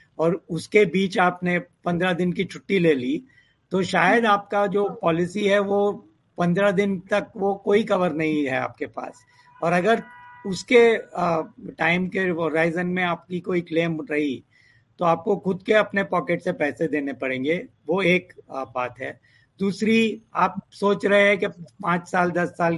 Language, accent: Hindi, native